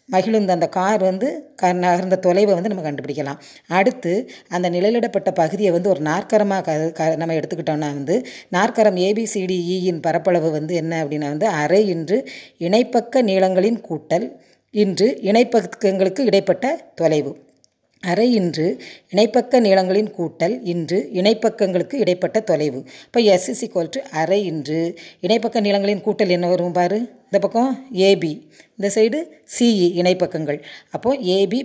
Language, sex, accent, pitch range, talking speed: Tamil, female, native, 170-215 Hz, 125 wpm